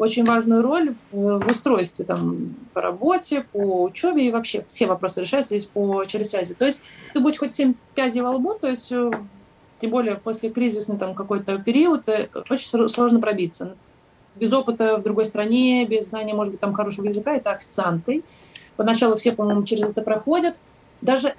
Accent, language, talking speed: native, Russian, 175 wpm